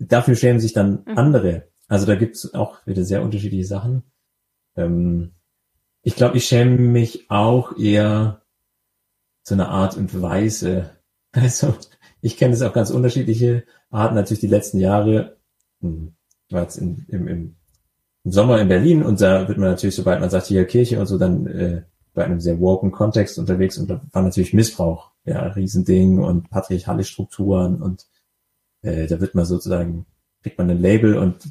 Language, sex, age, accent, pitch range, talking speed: German, male, 30-49, German, 90-110 Hz, 170 wpm